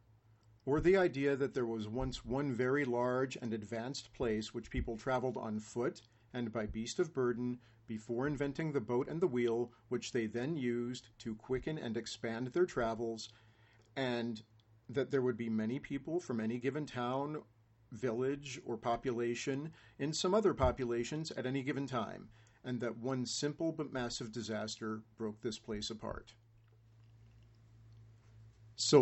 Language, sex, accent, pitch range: English, male, American, 110-135 Hz